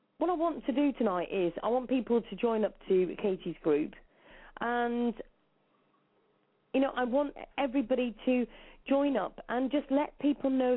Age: 40-59